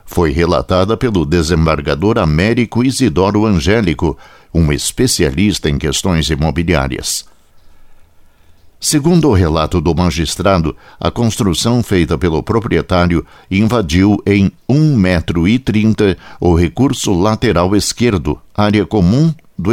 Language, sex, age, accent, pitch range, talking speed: Portuguese, male, 60-79, Brazilian, 85-115 Hz, 100 wpm